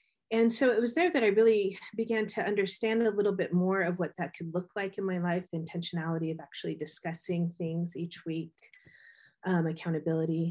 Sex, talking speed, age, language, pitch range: female, 195 wpm, 30-49, English, 170-205 Hz